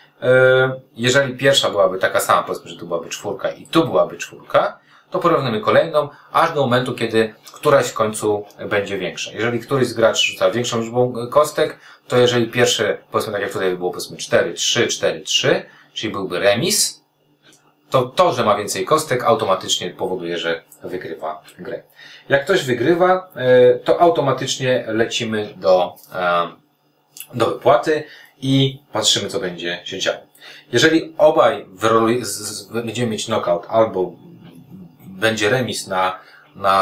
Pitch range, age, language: 100-135 Hz, 30-49, Polish